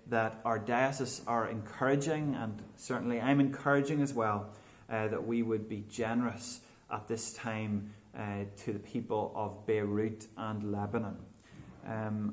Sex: male